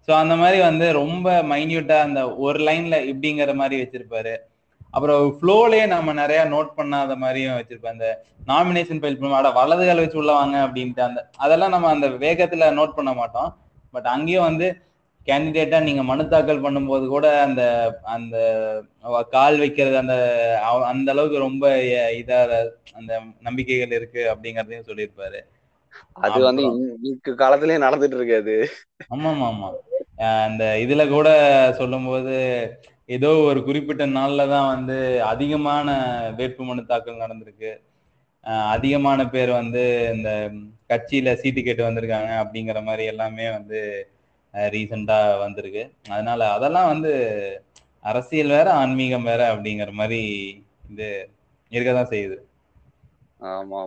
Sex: male